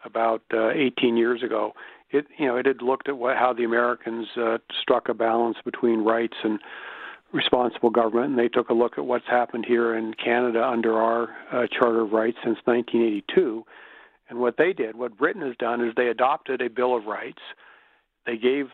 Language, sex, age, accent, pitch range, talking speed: English, male, 50-69, American, 115-125 Hz, 190 wpm